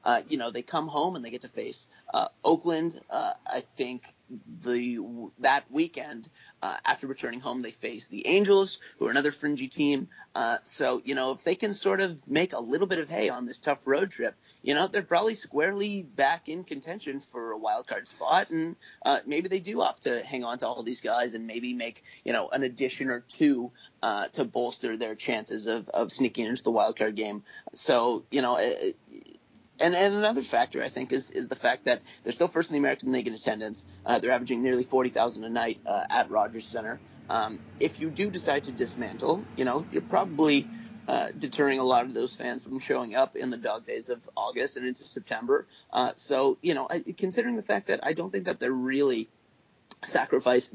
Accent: American